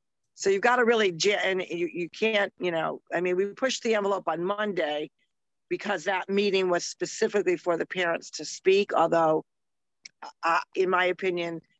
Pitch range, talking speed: 170-210 Hz, 175 wpm